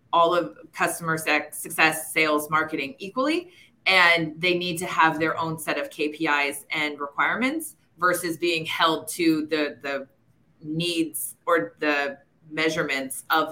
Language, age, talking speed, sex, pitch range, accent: English, 20-39, 135 wpm, female, 155-180 Hz, American